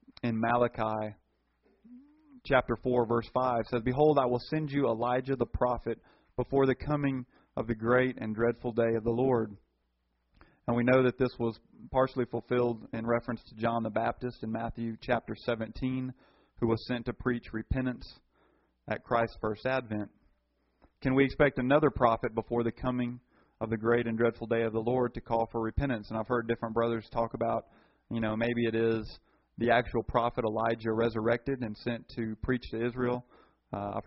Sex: male